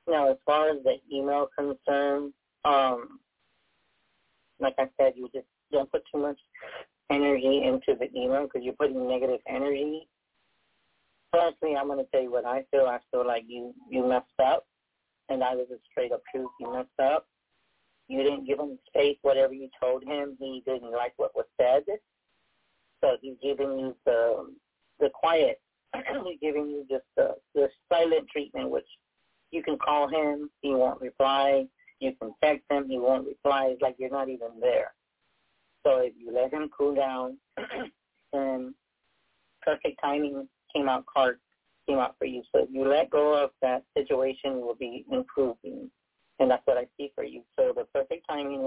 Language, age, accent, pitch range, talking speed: English, 40-59, American, 130-155 Hz, 175 wpm